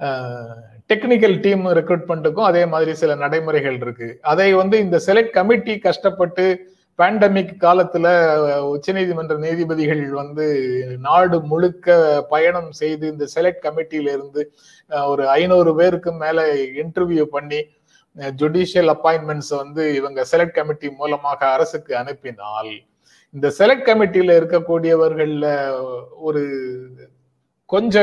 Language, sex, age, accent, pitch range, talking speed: Tamil, male, 30-49, native, 145-180 Hz, 105 wpm